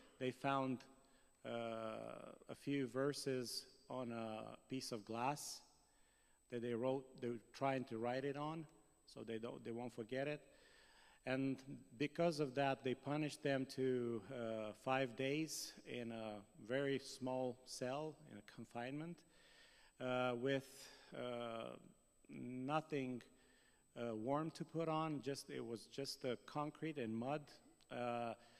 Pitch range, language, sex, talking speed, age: 120-145 Hz, English, male, 135 wpm, 40-59